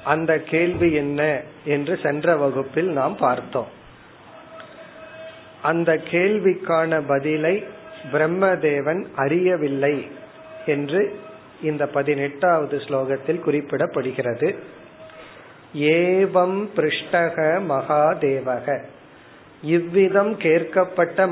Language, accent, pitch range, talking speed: Tamil, native, 145-180 Hz, 55 wpm